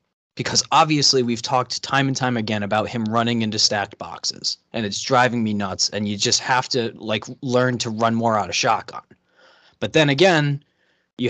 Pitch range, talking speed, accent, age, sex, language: 115-135 Hz, 190 wpm, American, 20-39, male, English